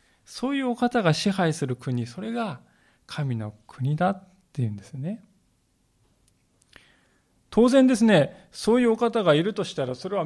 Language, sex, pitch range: Japanese, male, 130-190 Hz